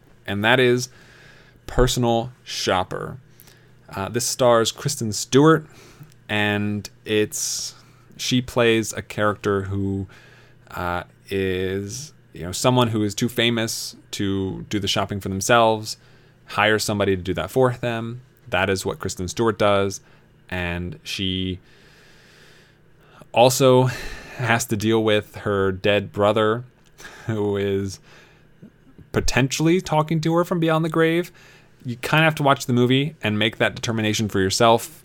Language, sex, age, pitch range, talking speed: English, male, 20-39, 100-130 Hz, 135 wpm